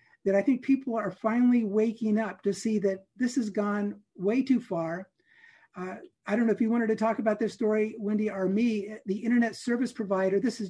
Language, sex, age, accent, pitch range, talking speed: English, male, 50-69, American, 200-245 Hz, 215 wpm